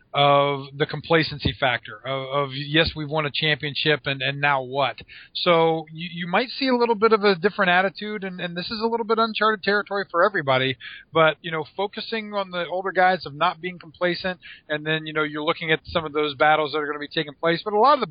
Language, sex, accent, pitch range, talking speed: English, male, American, 145-170 Hz, 240 wpm